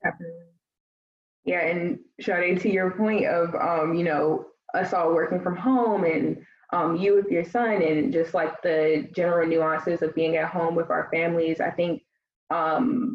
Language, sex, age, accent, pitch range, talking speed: English, female, 20-39, American, 155-185 Hz, 165 wpm